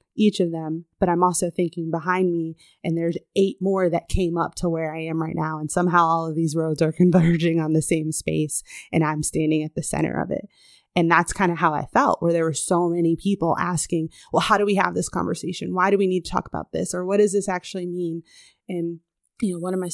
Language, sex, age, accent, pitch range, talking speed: English, female, 20-39, American, 170-195 Hz, 250 wpm